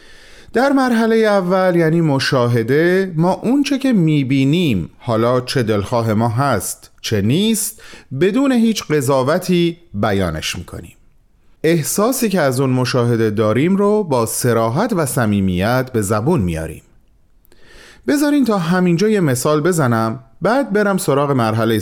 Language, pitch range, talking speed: Persian, 125-205 Hz, 125 wpm